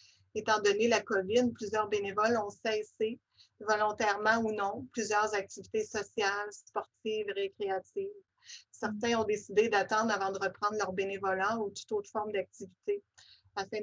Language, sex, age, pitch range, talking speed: French, female, 30-49, 195-220 Hz, 135 wpm